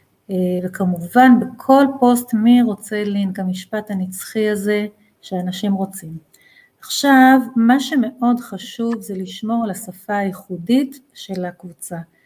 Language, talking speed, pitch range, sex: Hebrew, 110 wpm, 190-240 Hz, female